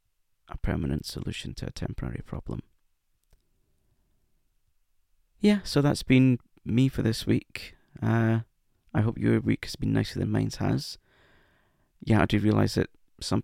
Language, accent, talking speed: English, British, 145 wpm